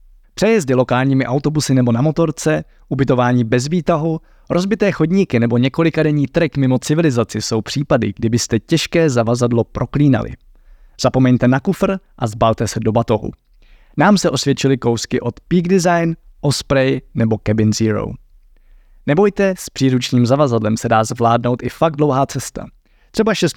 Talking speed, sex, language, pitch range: 135 wpm, male, Czech, 110-155 Hz